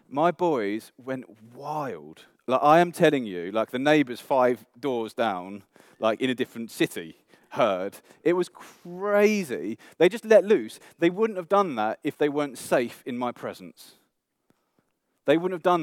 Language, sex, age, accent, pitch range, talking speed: English, male, 30-49, British, 105-150 Hz, 165 wpm